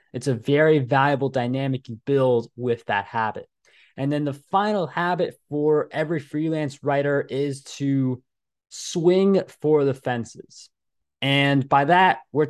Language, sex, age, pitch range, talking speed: English, male, 20-39, 130-160 Hz, 140 wpm